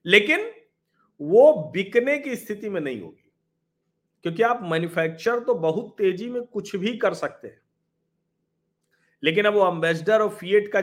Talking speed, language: 150 wpm, Hindi